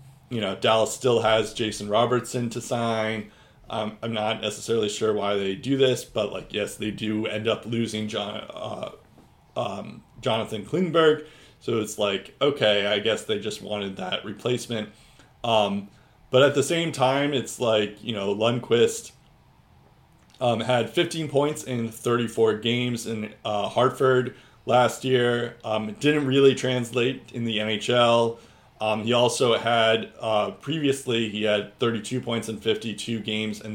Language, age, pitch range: English, 20-39, 110-135 Hz